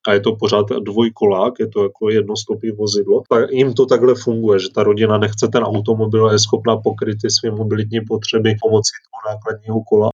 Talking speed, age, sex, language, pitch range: 185 wpm, 30-49, male, Czech, 110-120 Hz